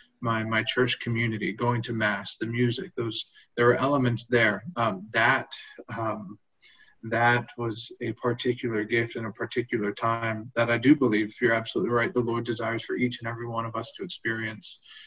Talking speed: 185 wpm